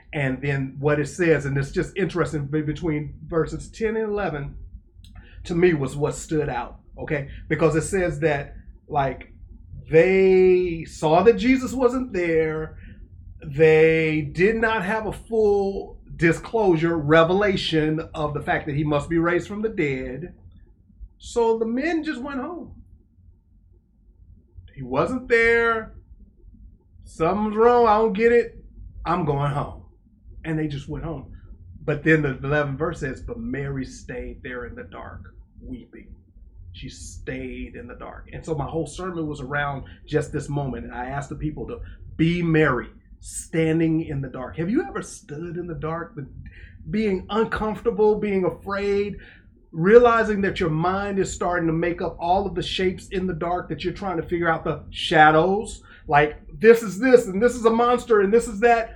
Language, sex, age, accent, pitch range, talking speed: English, male, 30-49, American, 130-190 Hz, 165 wpm